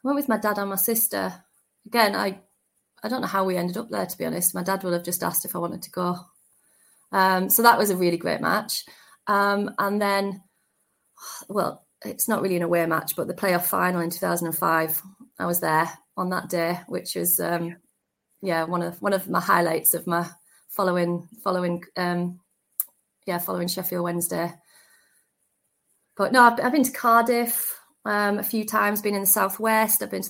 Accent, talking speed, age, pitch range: British, 200 wpm, 30-49, 175-205 Hz